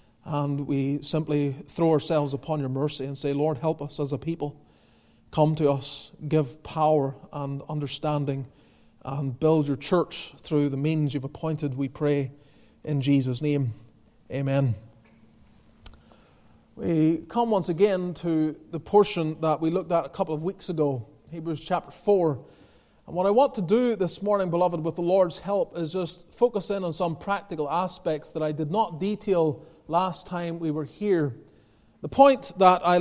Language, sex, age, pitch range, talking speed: English, male, 30-49, 150-190 Hz, 165 wpm